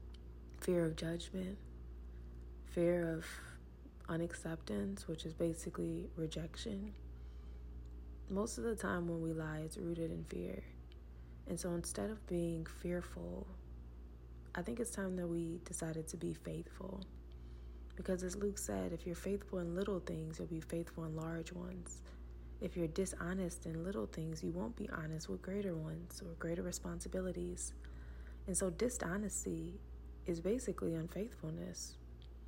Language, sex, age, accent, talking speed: English, female, 30-49, American, 140 wpm